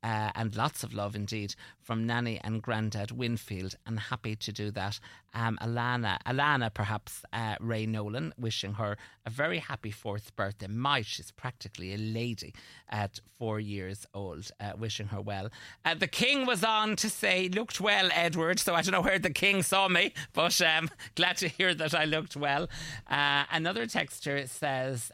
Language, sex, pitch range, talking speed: English, male, 105-130 Hz, 180 wpm